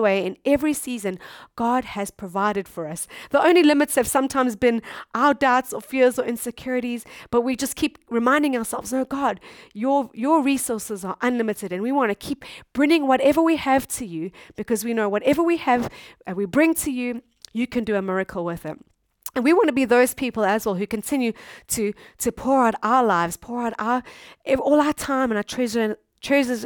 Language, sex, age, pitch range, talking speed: English, female, 30-49, 210-275 Hz, 205 wpm